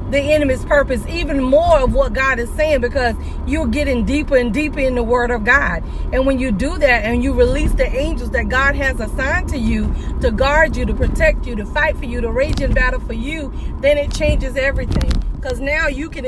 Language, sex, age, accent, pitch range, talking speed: English, female, 40-59, American, 245-305 Hz, 225 wpm